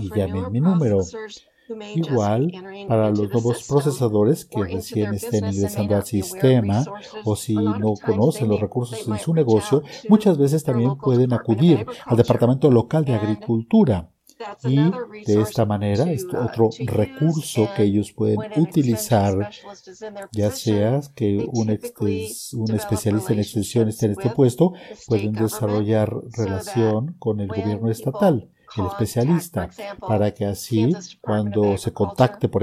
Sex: male